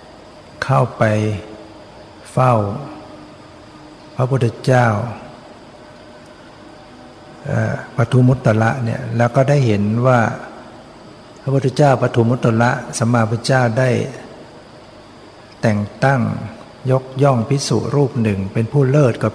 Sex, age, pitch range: male, 60-79, 110-125 Hz